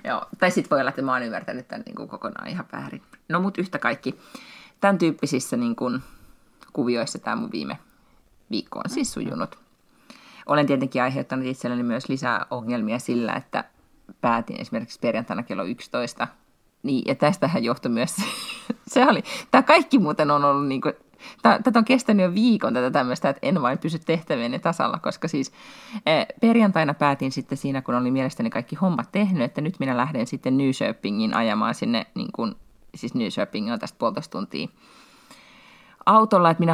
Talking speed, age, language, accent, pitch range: 165 wpm, 30-49, Finnish, native, 130-210 Hz